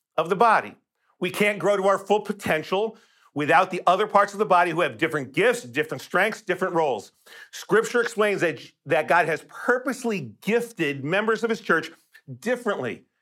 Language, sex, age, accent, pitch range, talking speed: English, male, 50-69, American, 165-205 Hz, 170 wpm